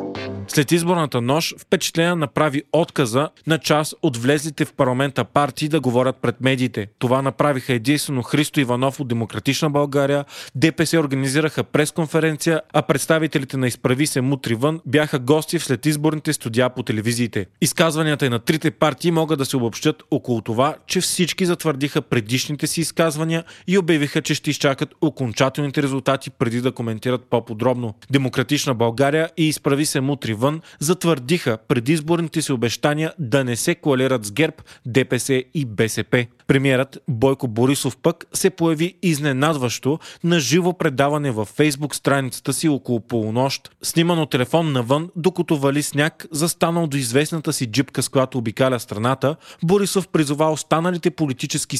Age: 30-49